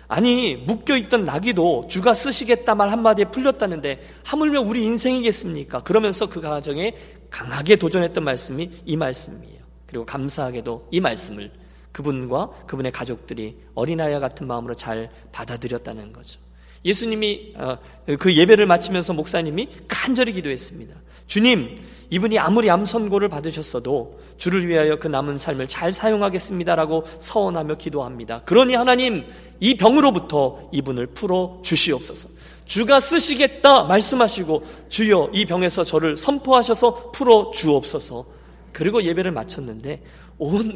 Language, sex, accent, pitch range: Korean, male, native, 130-215 Hz